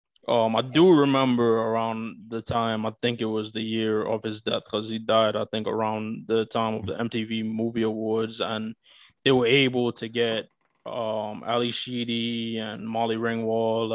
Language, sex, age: English, male, 20-39